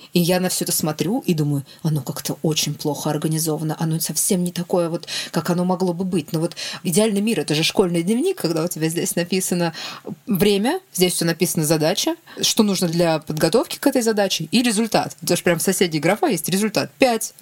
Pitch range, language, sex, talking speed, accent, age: 155-190 Hz, Russian, female, 200 wpm, native, 20-39